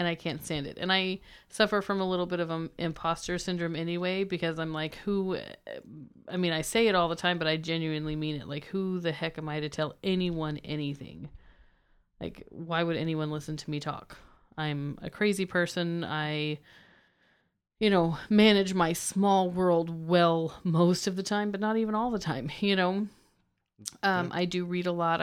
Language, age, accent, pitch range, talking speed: English, 30-49, American, 155-180 Hz, 195 wpm